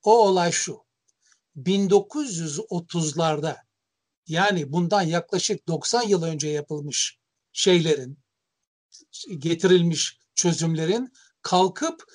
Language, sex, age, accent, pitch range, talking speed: Turkish, male, 60-79, native, 160-205 Hz, 75 wpm